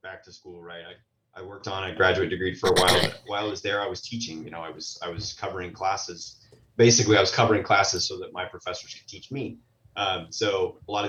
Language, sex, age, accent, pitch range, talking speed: English, male, 30-49, American, 90-115 Hz, 250 wpm